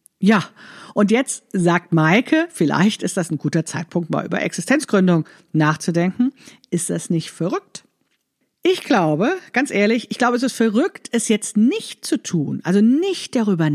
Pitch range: 155-220 Hz